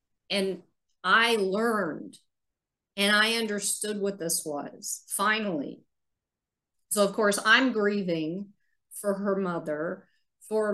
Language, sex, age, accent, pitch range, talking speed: English, female, 40-59, American, 180-225 Hz, 105 wpm